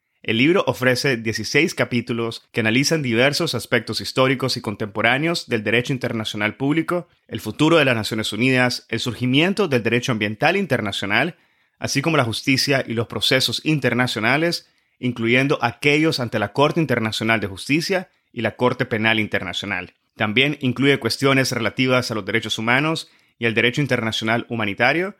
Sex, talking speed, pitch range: male, 150 wpm, 110-135 Hz